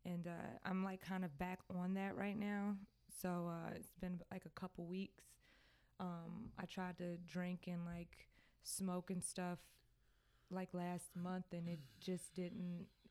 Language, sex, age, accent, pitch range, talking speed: English, female, 20-39, American, 170-185 Hz, 165 wpm